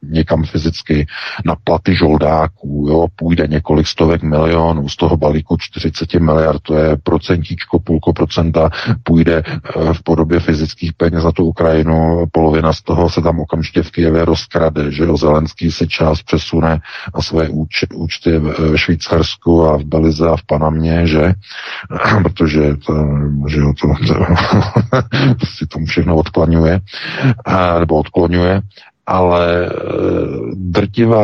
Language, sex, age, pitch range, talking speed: Czech, male, 50-69, 80-95 Hz, 135 wpm